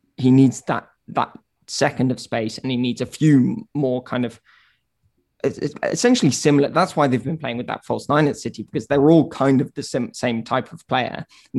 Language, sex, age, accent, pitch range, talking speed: English, male, 20-39, British, 120-140 Hz, 210 wpm